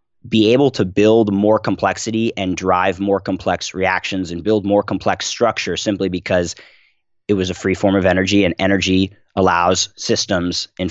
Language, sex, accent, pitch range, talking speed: English, male, American, 90-110 Hz, 165 wpm